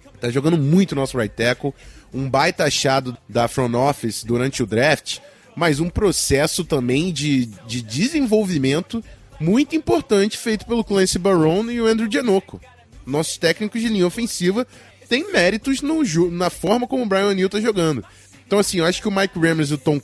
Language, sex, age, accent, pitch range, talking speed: Portuguese, male, 20-39, Brazilian, 135-195 Hz, 185 wpm